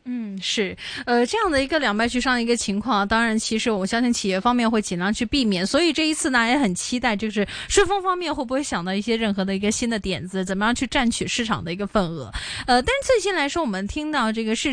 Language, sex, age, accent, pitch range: Chinese, female, 20-39, native, 210-280 Hz